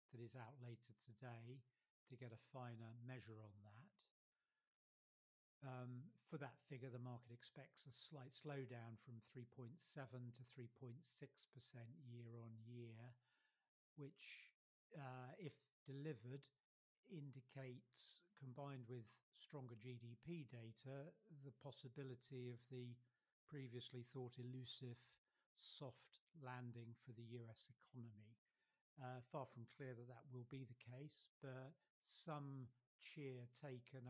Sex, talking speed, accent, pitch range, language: male, 110 wpm, British, 120-140 Hz, English